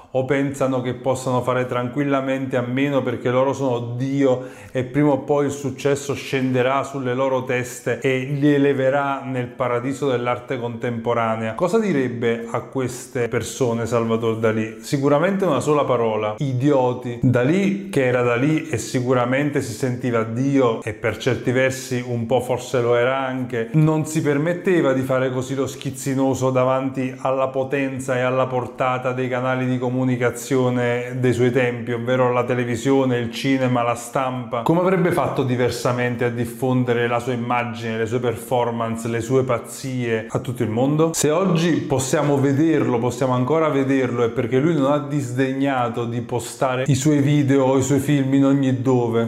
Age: 30-49